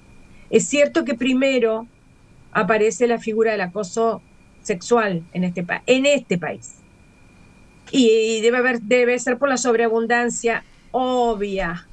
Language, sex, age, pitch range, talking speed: Spanish, female, 40-59, 185-235 Hz, 130 wpm